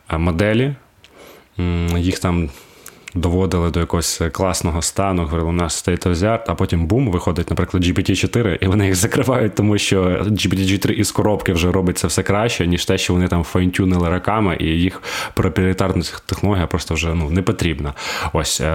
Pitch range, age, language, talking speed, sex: 85-100 Hz, 20-39, Ukrainian, 160 wpm, male